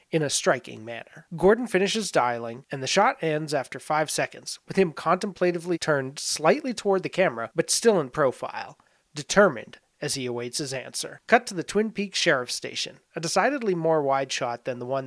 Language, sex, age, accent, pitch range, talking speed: English, male, 30-49, American, 135-185 Hz, 185 wpm